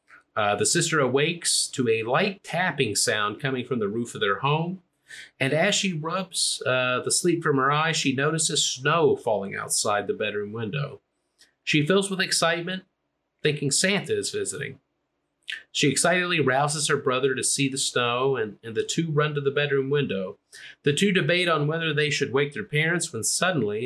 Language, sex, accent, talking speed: English, male, American, 180 wpm